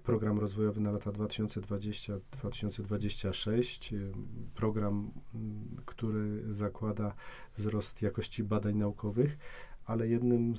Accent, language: native, Polish